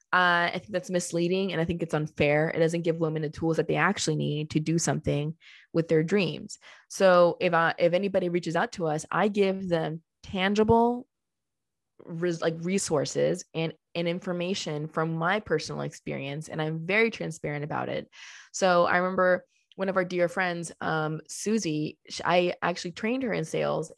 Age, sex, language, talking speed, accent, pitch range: 20-39, female, English, 180 wpm, American, 160-195 Hz